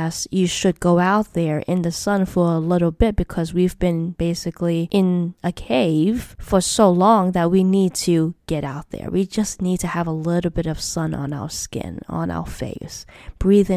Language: English